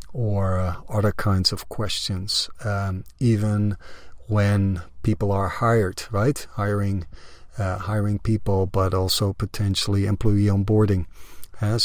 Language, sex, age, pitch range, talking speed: English, male, 40-59, 95-105 Hz, 115 wpm